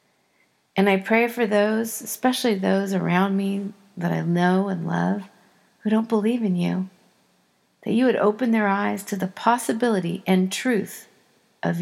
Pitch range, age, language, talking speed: 195-235 Hz, 40-59, English, 155 wpm